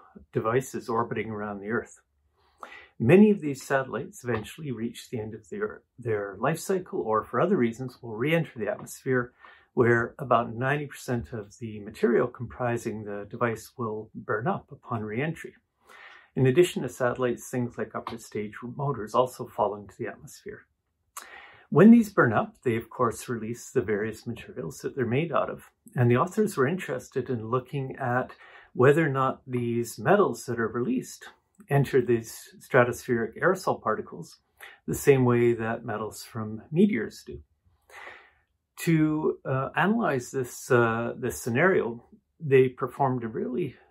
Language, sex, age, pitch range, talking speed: English, male, 50-69, 115-135 Hz, 150 wpm